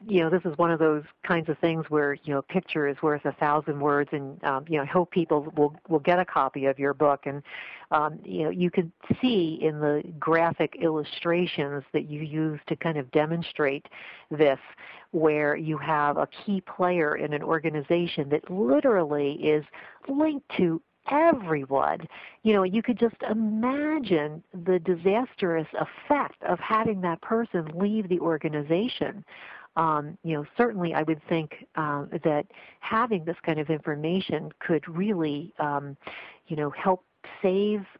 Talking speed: 165 wpm